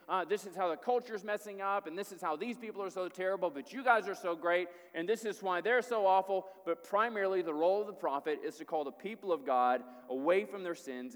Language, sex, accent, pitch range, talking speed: English, male, American, 165-205 Hz, 260 wpm